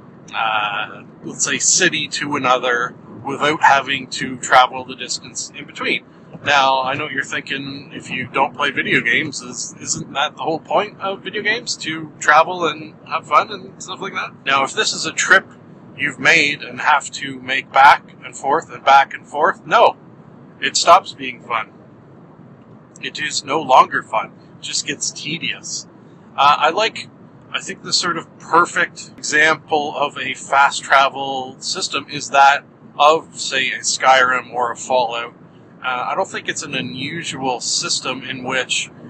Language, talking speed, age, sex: English, 165 wpm, 40-59, male